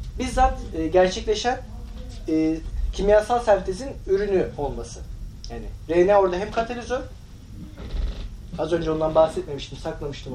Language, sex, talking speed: Turkish, male, 100 wpm